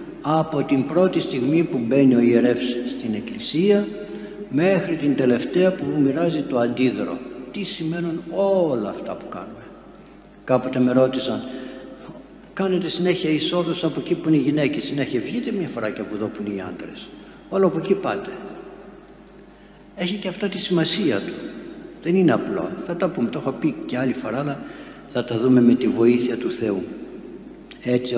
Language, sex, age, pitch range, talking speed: Greek, male, 60-79, 125-190 Hz, 165 wpm